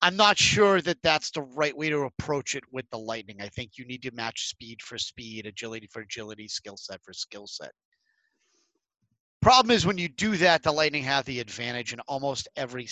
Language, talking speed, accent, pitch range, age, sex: English, 210 wpm, American, 130-180 Hz, 30-49, male